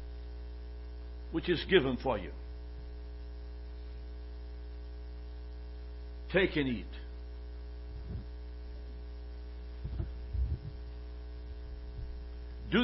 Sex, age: male, 60-79